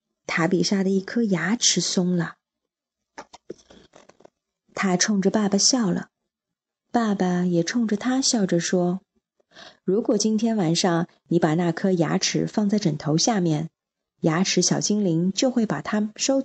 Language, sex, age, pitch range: Chinese, female, 20-39, 175-225 Hz